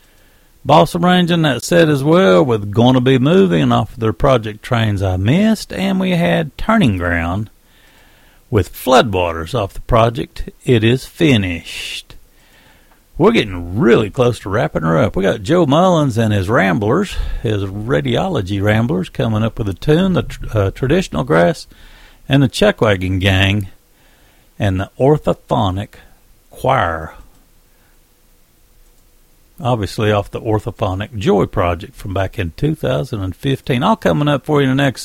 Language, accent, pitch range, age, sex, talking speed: English, American, 100-140 Hz, 60-79, male, 145 wpm